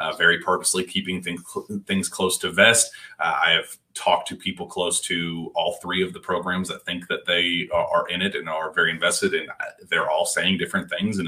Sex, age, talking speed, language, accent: male, 30-49, 235 wpm, English, American